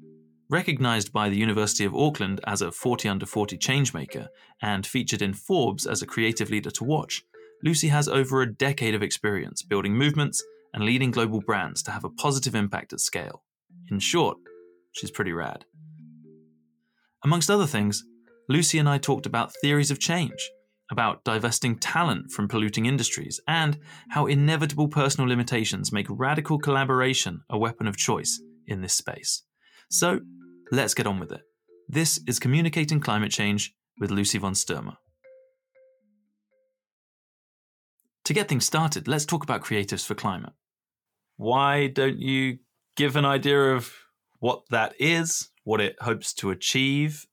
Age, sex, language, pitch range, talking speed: 20-39, male, English, 105-150 Hz, 150 wpm